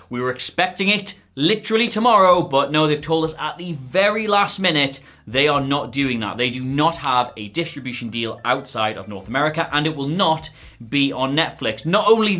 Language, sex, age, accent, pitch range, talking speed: English, male, 20-39, British, 140-210 Hz, 200 wpm